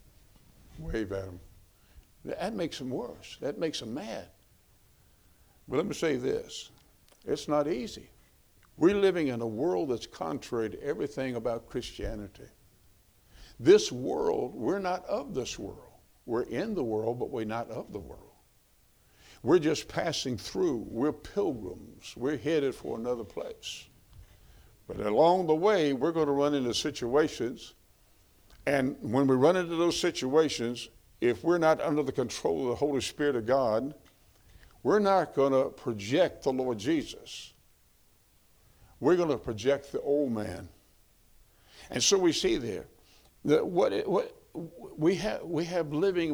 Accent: American